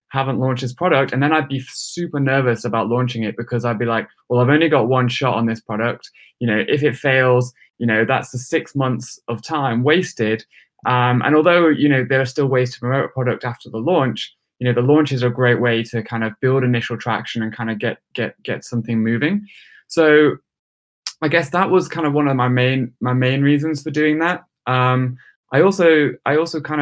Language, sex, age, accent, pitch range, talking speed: English, male, 20-39, British, 120-145 Hz, 225 wpm